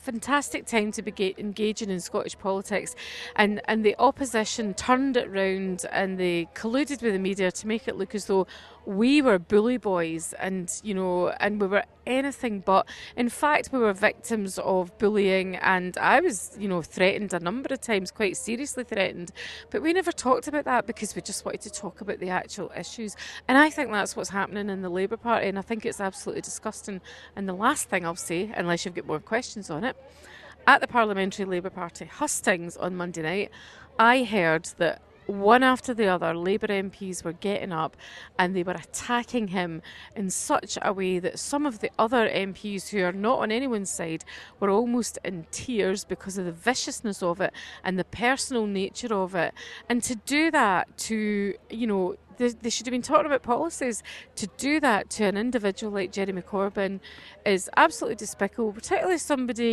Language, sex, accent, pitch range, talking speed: English, female, British, 190-240 Hz, 190 wpm